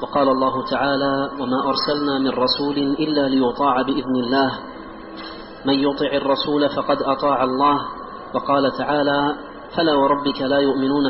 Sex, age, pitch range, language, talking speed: male, 30-49, 135-145 Hz, Arabic, 125 wpm